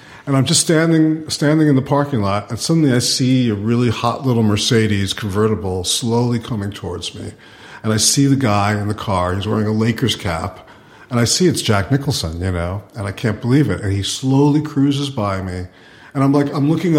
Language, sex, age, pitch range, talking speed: English, male, 50-69, 110-150 Hz, 210 wpm